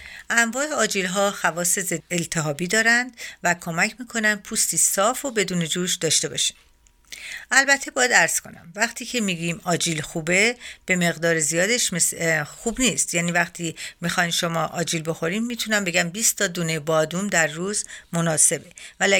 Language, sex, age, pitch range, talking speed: Persian, female, 50-69, 170-220 Hz, 145 wpm